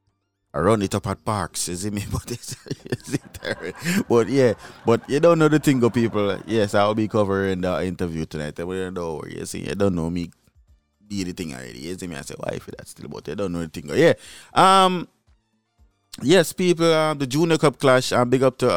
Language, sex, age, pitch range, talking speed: English, male, 20-39, 85-115 Hz, 215 wpm